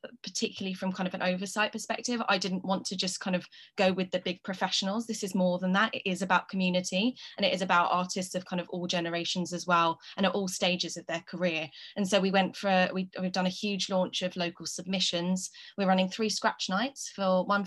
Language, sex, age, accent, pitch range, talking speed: English, female, 20-39, British, 175-195 Hz, 230 wpm